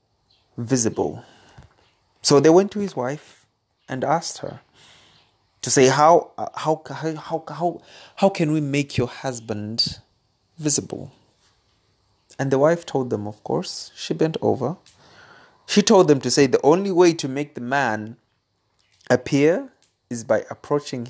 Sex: male